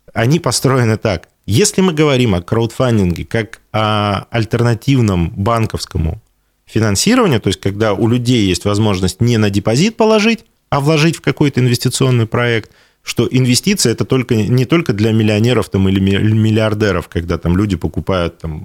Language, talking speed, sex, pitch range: Russian, 150 wpm, male, 90-125 Hz